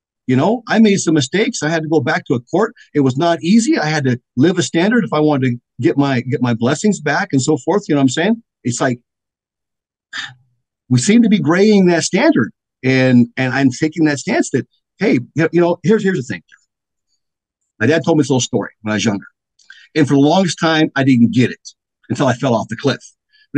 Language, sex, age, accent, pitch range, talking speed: English, male, 50-69, American, 125-165 Hz, 235 wpm